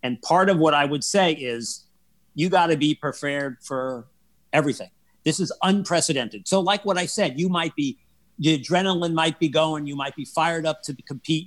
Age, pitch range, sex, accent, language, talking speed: 50-69, 150-190 Hz, male, American, English, 200 wpm